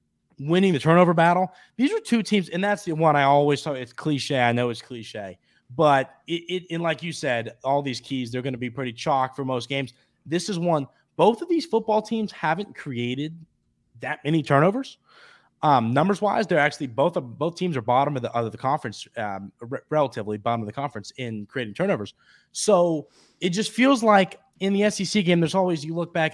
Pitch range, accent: 130-165 Hz, American